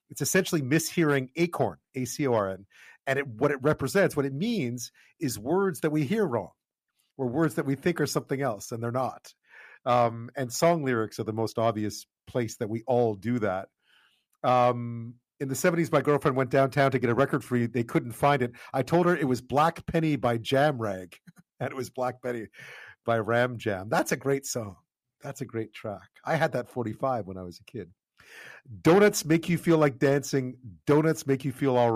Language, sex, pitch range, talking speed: English, male, 115-150 Hz, 200 wpm